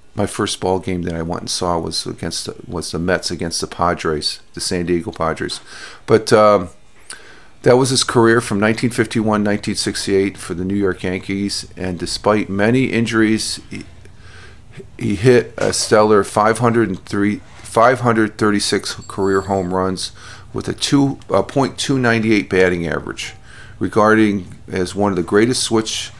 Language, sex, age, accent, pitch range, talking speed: English, male, 40-59, American, 90-110 Hz, 145 wpm